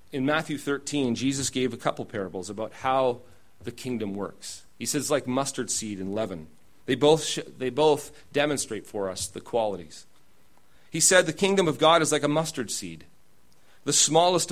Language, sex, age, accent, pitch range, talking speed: English, male, 40-59, American, 115-155 Hz, 175 wpm